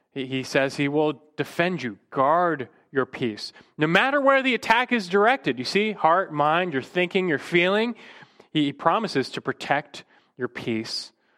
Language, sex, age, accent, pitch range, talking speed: English, male, 30-49, American, 120-175 Hz, 160 wpm